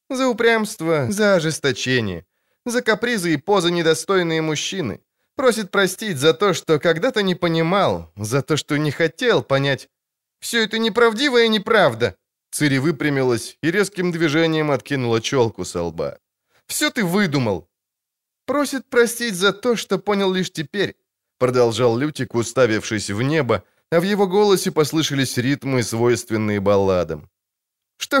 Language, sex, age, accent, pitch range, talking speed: Ukrainian, male, 20-39, native, 135-215 Hz, 135 wpm